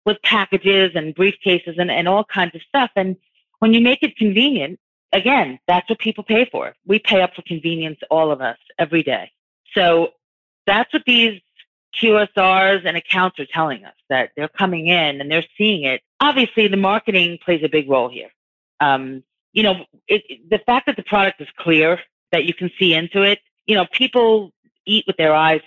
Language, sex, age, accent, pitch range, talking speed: English, female, 40-59, American, 170-220 Hz, 190 wpm